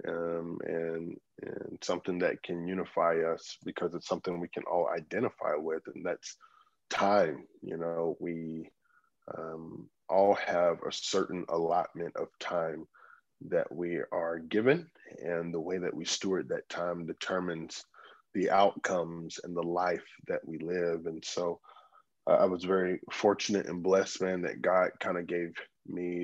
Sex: male